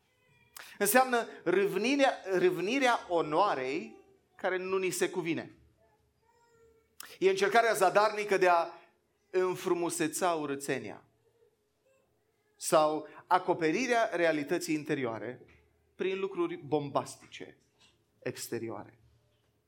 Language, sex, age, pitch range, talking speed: Romanian, male, 30-49, 140-205 Hz, 70 wpm